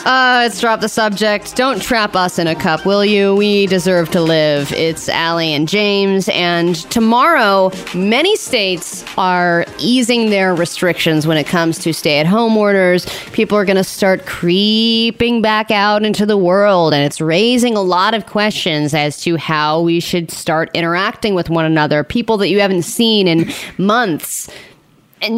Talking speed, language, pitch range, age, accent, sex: 170 wpm, English, 170-235 Hz, 30-49, American, female